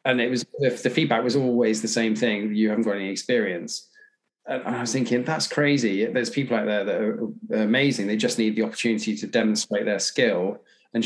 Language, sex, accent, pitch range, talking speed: English, male, British, 105-125 Hz, 205 wpm